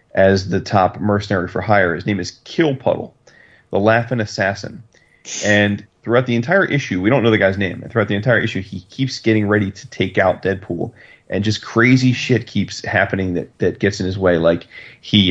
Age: 30-49